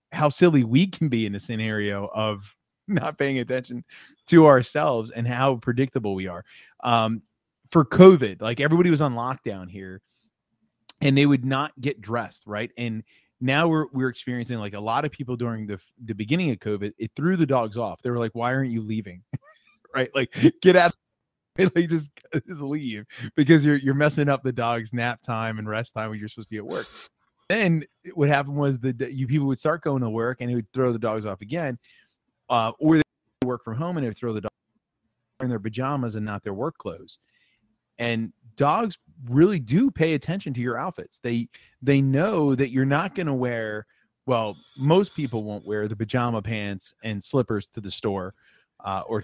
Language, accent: English, American